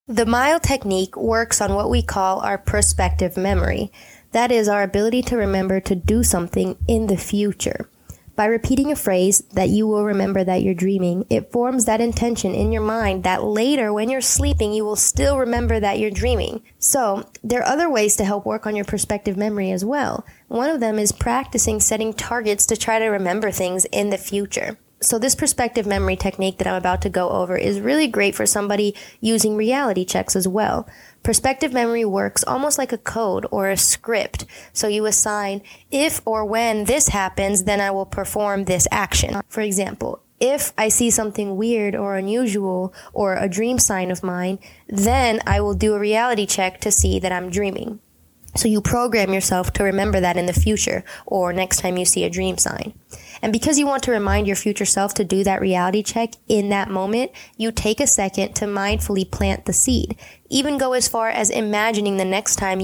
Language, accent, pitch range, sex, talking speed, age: English, American, 195-230 Hz, female, 200 wpm, 20-39